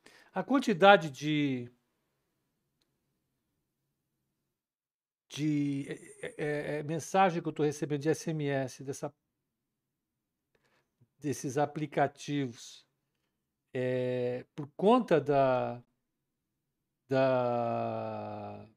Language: Portuguese